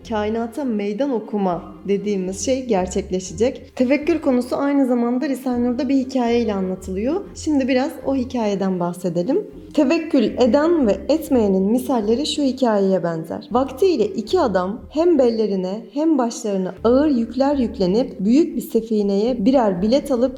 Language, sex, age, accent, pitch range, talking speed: Turkish, female, 30-49, native, 205-275 Hz, 125 wpm